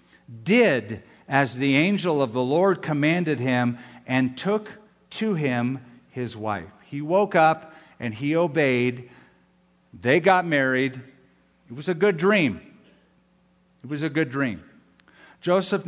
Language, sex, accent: English, male, American